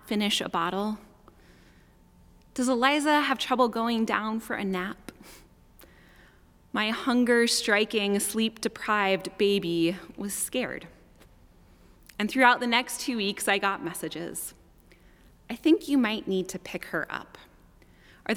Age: 20-39